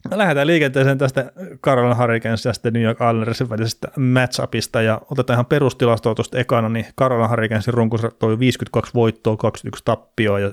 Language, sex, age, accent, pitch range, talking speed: Finnish, male, 30-49, native, 110-125 Hz, 150 wpm